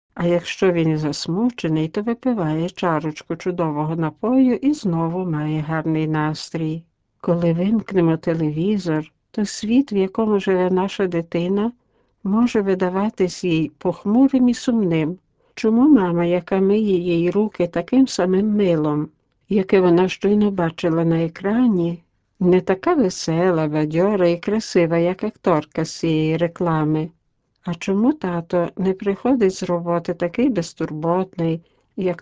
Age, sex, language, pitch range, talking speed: 60-79, female, Czech, 165-205 Hz, 125 wpm